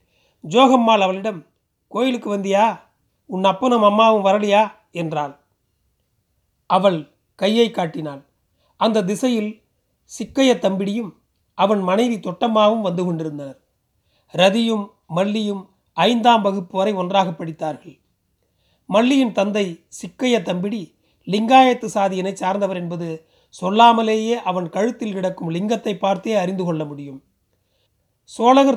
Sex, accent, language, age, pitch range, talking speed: male, native, Tamil, 40-59, 175-220 Hz, 95 wpm